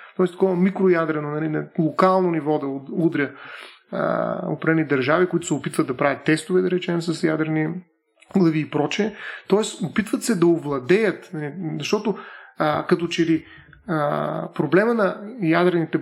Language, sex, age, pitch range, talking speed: Bulgarian, male, 30-49, 165-200 Hz, 125 wpm